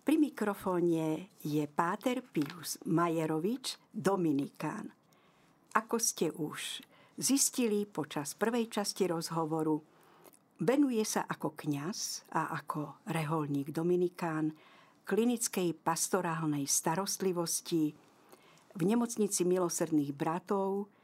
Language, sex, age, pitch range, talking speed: Slovak, female, 50-69, 155-210 Hz, 85 wpm